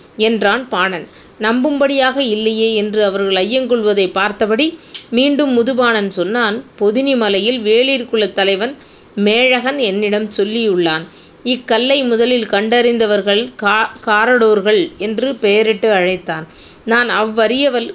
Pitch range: 205-245 Hz